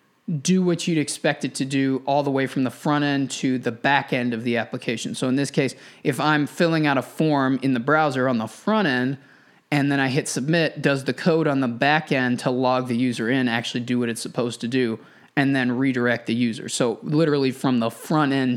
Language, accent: English, American